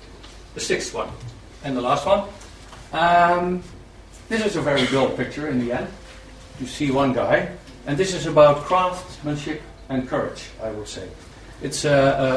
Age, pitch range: 60-79, 120-155 Hz